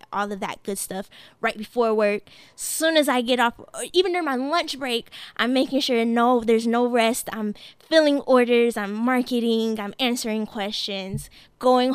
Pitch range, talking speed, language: 215-245 Hz, 180 wpm, English